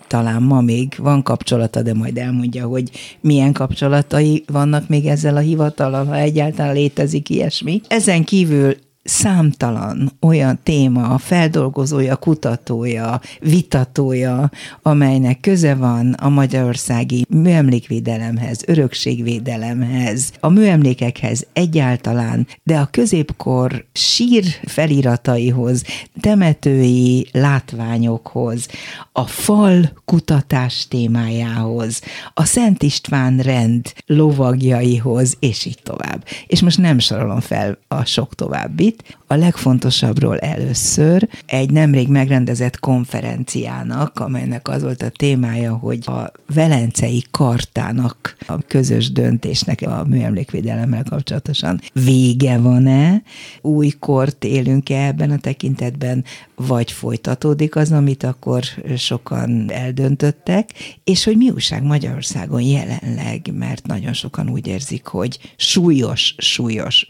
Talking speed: 105 wpm